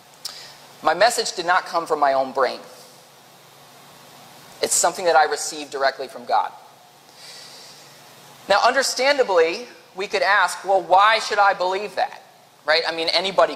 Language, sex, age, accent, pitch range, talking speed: English, male, 20-39, American, 170-250 Hz, 140 wpm